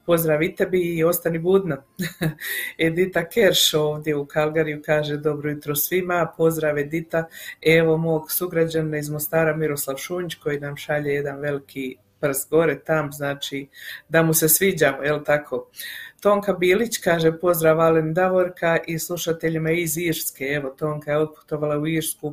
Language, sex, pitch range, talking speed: Croatian, female, 150-170 Hz, 145 wpm